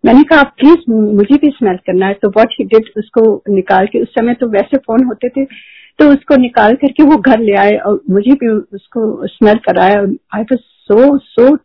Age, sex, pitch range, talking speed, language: 50-69, female, 210-275 Hz, 205 wpm, Hindi